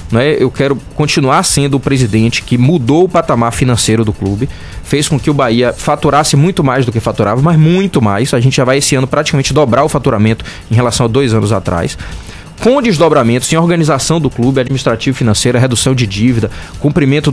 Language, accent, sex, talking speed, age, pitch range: Portuguese, Brazilian, male, 190 wpm, 20-39, 120-160 Hz